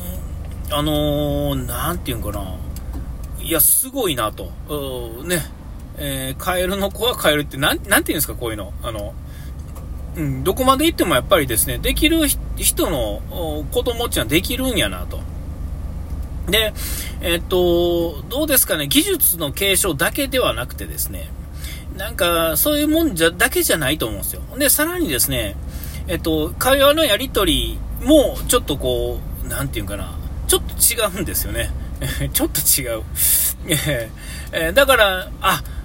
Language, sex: Japanese, male